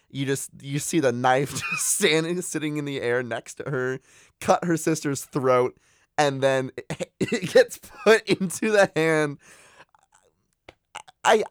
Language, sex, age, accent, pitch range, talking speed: English, male, 20-39, American, 100-165 Hz, 150 wpm